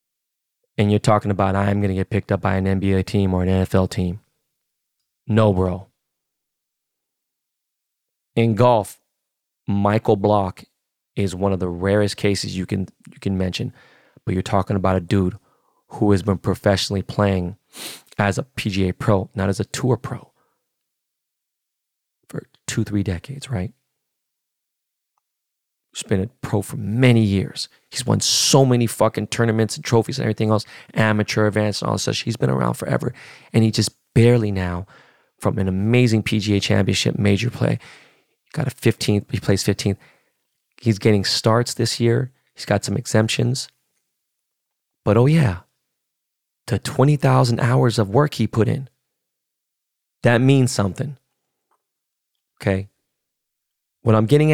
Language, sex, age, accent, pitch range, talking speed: English, male, 20-39, American, 100-125 Hz, 145 wpm